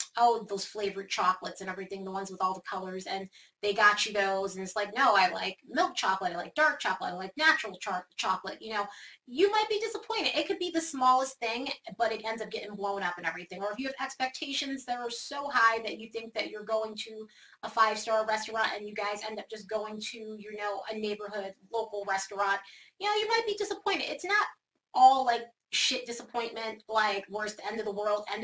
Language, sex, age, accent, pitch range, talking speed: English, female, 20-39, American, 205-270 Hz, 225 wpm